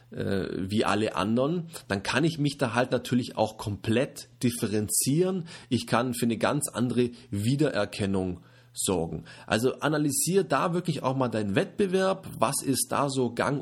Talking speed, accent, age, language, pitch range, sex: 150 wpm, German, 30-49, German, 115-140 Hz, male